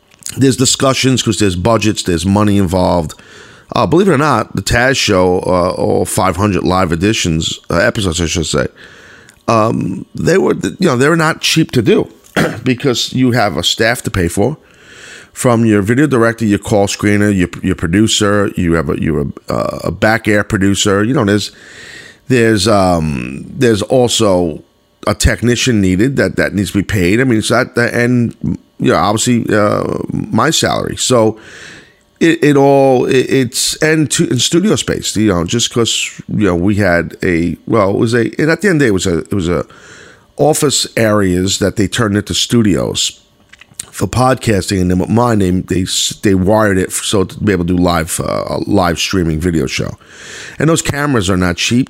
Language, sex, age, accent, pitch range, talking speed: English, male, 40-59, American, 95-120 Hz, 190 wpm